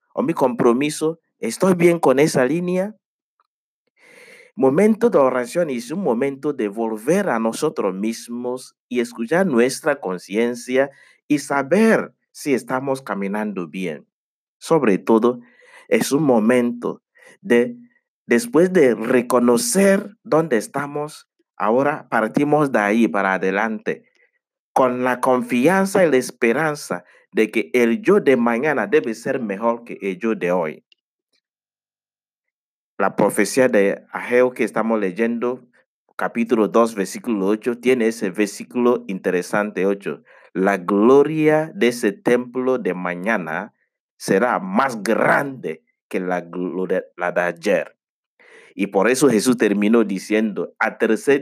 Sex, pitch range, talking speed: male, 110-150 Hz, 125 wpm